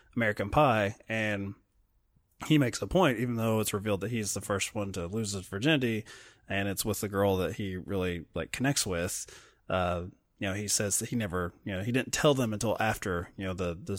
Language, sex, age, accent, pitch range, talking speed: English, male, 20-39, American, 100-135 Hz, 220 wpm